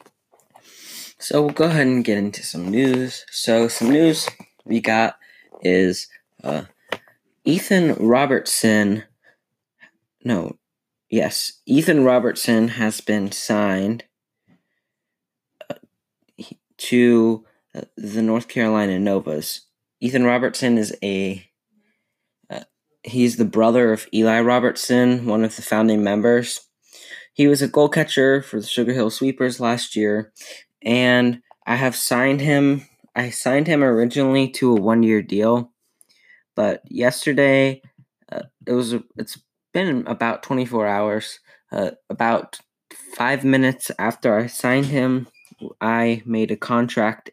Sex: male